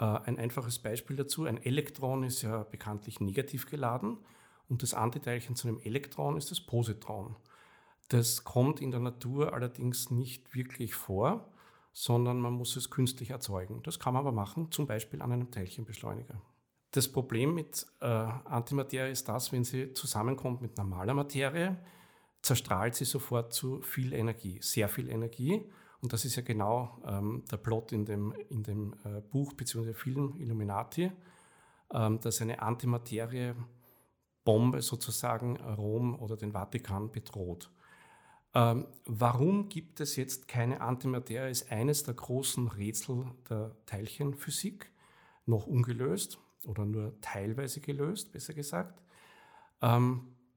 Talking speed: 140 wpm